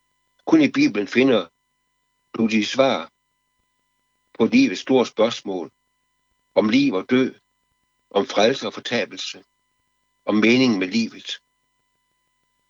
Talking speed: 110 wpm